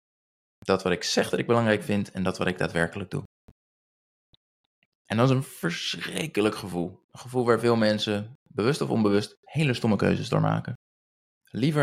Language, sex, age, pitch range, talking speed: Dutch, male, 20-39, 90-110 Hz, 170 wpm